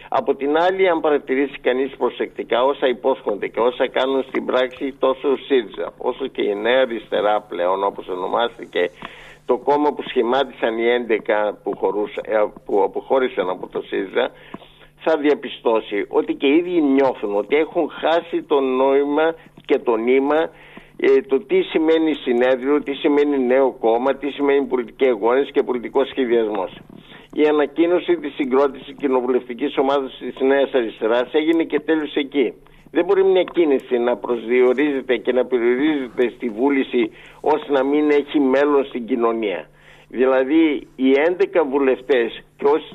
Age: 50-69